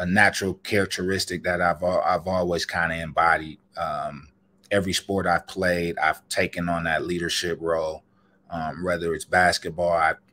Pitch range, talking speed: 85-100 Hz, 145 wpm